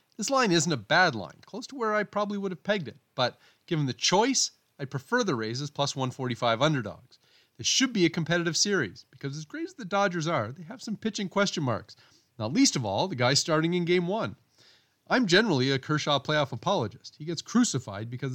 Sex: male